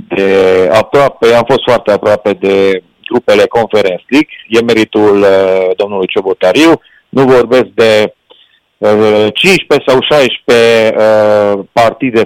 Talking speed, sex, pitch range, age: 115 wpm, male, 100-130 Hz, 40-59